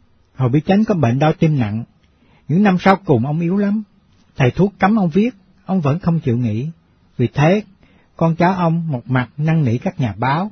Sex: male